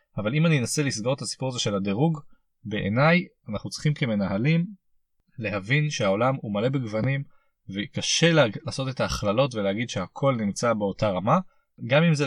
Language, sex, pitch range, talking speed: Hebrew, male, 110-145 Hz, 150 wpm